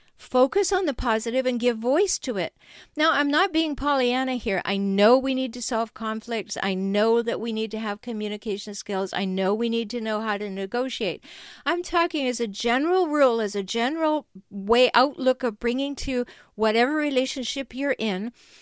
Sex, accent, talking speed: female, American, 185 wpm